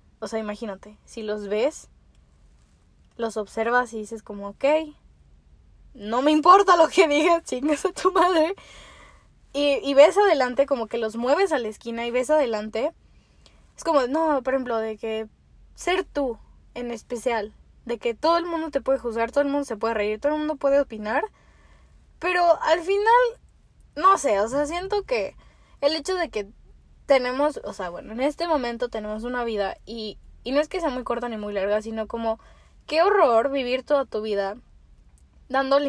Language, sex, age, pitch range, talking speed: Spanish, female, 10-29, 220-300 Hz, 180 wpm